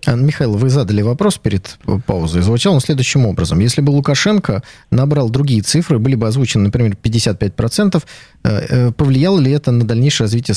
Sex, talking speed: male, 155 wpm